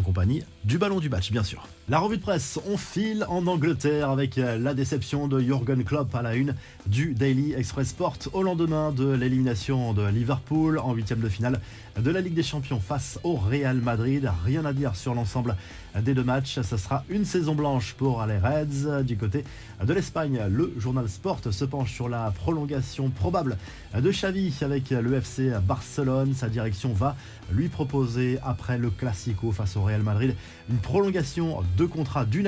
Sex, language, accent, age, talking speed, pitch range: male, French, French, 20-39, 185 wpm, 115-145 Hz